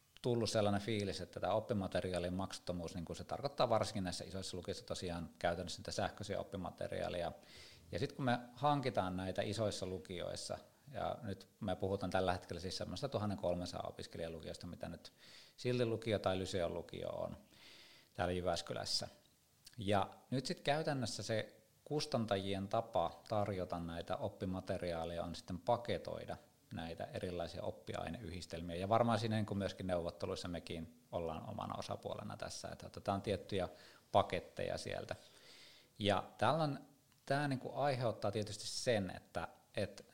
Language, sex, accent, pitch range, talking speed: Finnish, male, native, 90-110 Hz, 130 wpm